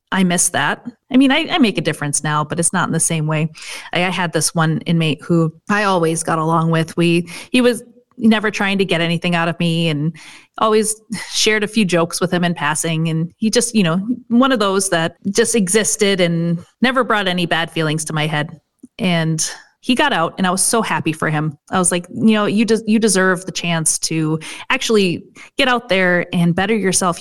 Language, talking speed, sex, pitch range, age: English, 225 wpm, female, 165-205 Hz, 30-49